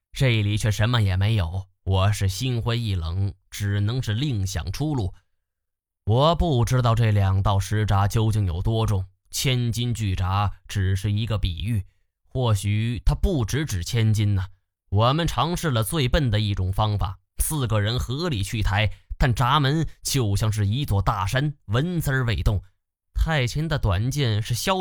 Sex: male